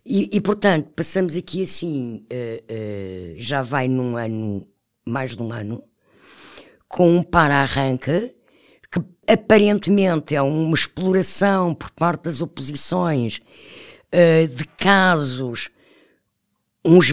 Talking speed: 100 wpm